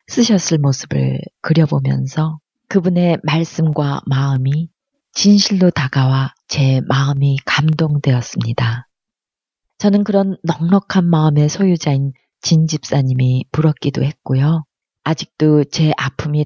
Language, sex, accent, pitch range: Korean, female, native, 135-165 Hz